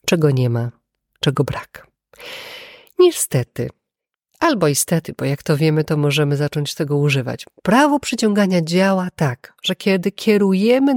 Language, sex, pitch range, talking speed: Polish, female, 155-225 Hz, 130 wpm